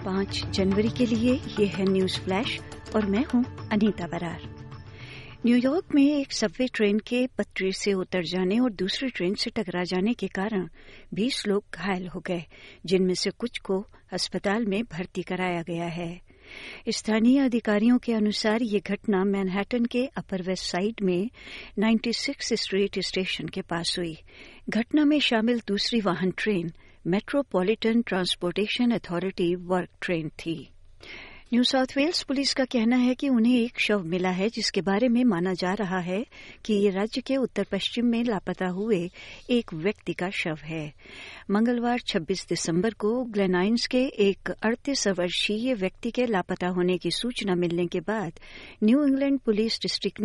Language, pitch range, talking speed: Hindi, 185-235 Hz, 160 wpm